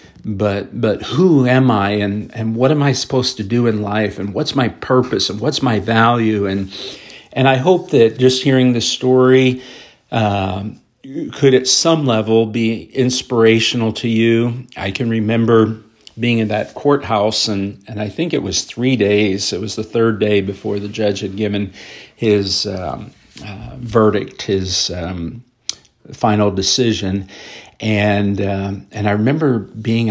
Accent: American